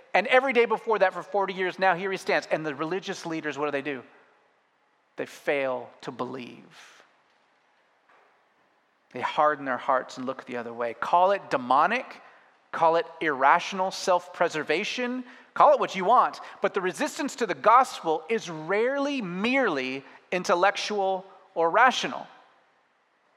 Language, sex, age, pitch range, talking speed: English, male, 30-49, 175-240 Hz, 145 wpm